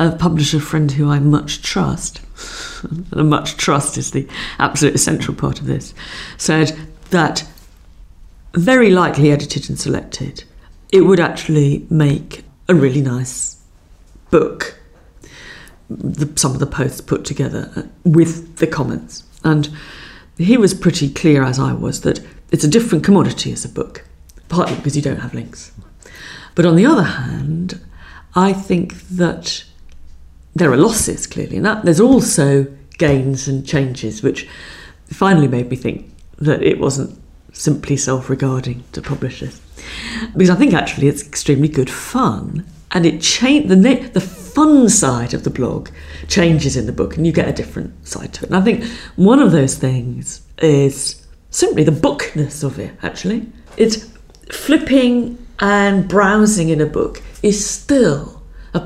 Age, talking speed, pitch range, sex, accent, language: 50-69, 155 wpm, 130-185 Hz, female, British, English